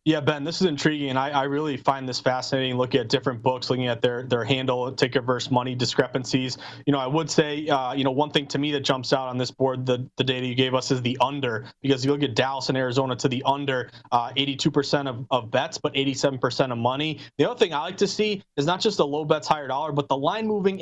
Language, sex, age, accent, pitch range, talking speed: English, male, 20-39, American, 130-160 Hz, 260 wpm